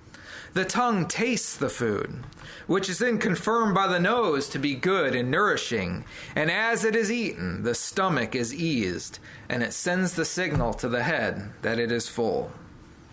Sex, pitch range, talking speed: male, 160-230 Hz, 175 wpm